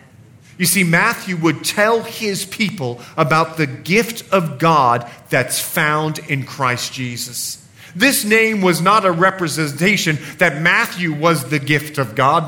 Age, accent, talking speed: 40-59, American, 145 wpm